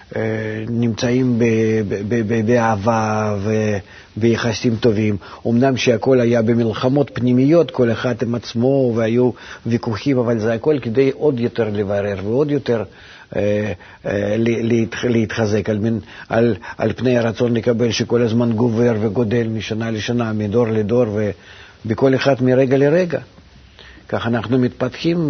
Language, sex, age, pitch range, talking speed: Hebrew, male, 50-69, 105-125 Hz, 135 wpm